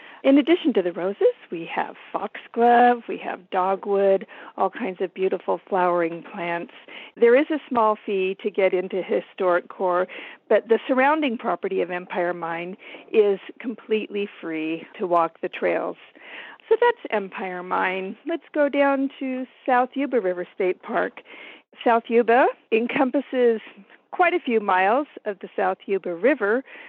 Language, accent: English, American